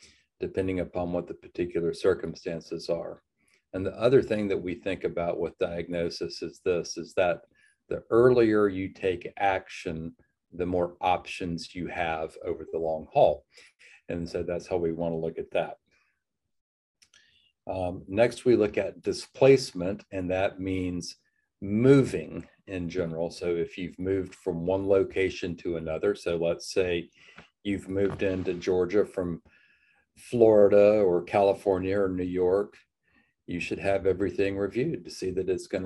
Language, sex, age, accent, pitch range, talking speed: English, male, 40-59, American, 85-100 Hz, 150 wpm